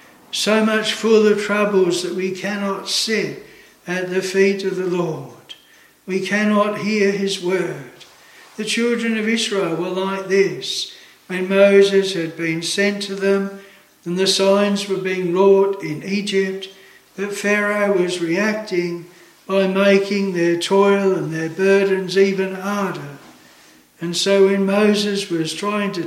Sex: male